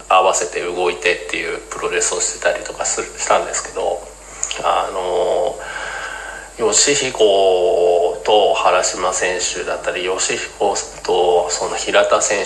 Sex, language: male, Japanese